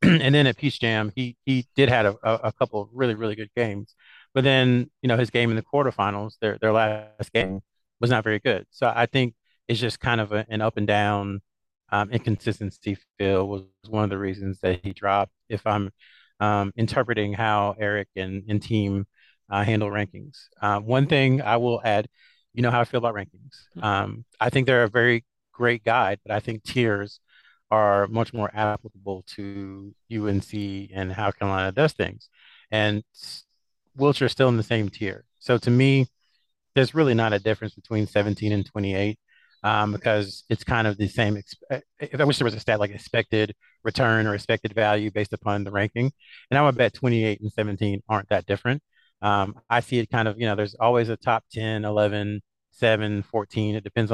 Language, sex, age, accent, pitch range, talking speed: English, male, 30-49, American, 100-120 Hz, 195 wpm